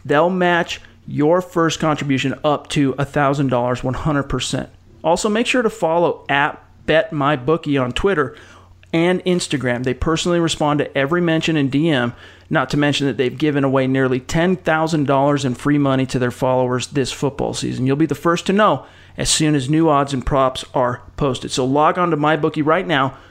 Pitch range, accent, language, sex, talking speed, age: 130-160 Hz, American, English, male, 175 wpm, 40-59